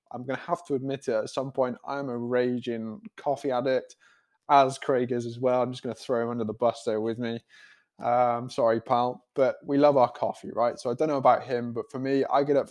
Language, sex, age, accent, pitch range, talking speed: English, male, 20-39, British, 115-135 Hz, 245 wpm